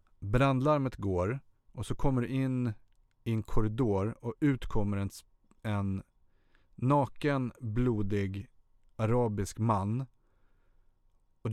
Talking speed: 95 wpm